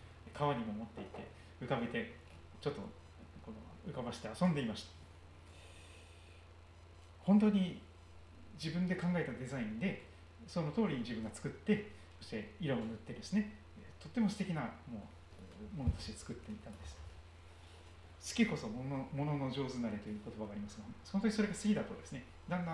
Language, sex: Japanese, male